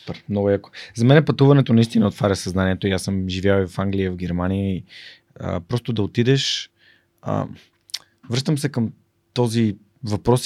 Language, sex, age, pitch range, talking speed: Bulgarian, male, 20-39, 105-130 Hz, 165 wpm